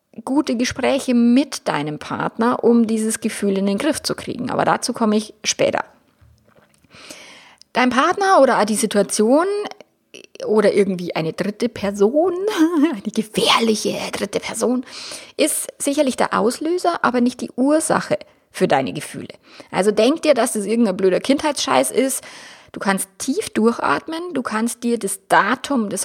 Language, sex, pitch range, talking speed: German, female, 205-270 Hz, 145 wpm